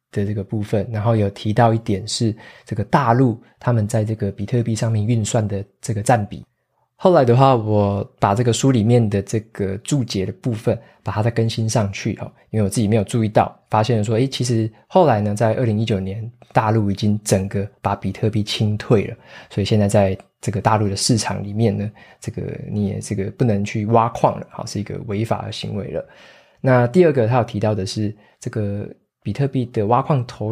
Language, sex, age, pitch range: Chinese, male, 20-39, 105-120 Hz